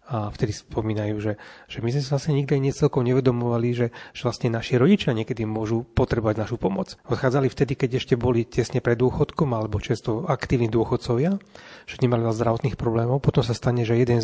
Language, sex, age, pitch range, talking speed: Slovak, male, 30-49, 115-135 Hz, 185 wpm